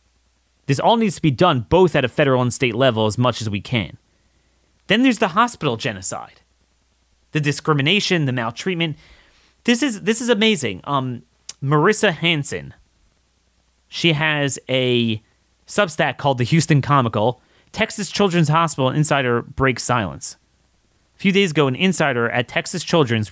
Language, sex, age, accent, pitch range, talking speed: English, male, 30-49, American, 115-145 Hz, 150 wpm